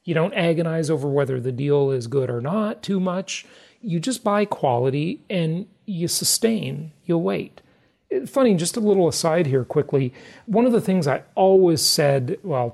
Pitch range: 140-195 Hz